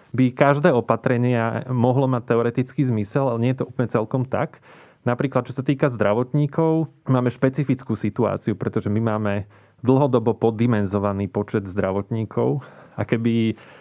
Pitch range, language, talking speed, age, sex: 110-130 Hz, Slovak, 135 wpm, 30-49, male